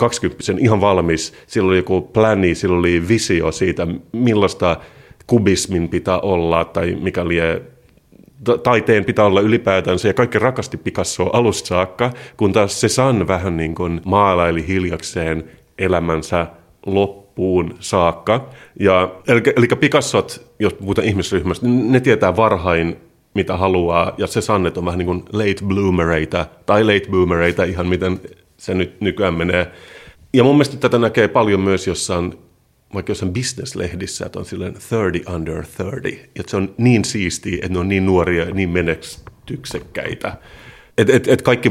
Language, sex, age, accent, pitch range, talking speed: Finnish, male, 30-49, native, 90-110 Hz, 145 wpm